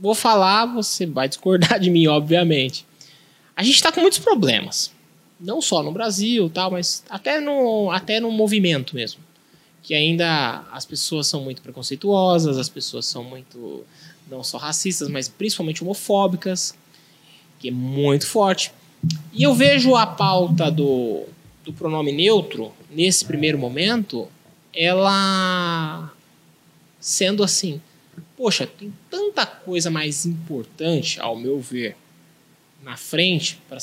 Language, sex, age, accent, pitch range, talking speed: Portuguese, male, 20-39, Brazilian, 145-205 Hz, 130 wpm